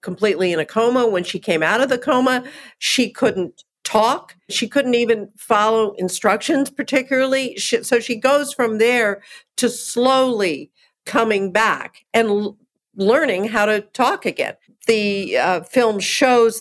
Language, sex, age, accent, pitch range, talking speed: English, female, 50-69, American, 195-245 Hz, 150 wpm